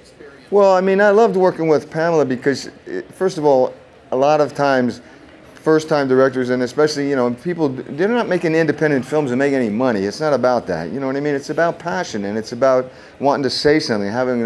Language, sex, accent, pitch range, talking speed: English, male, American, 115-150 Hz, 225 wpm